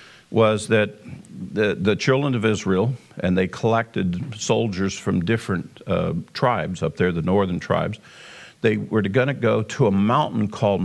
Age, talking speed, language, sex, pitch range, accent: 50-69, 160 wpm, English, male, 95-115 Hz, American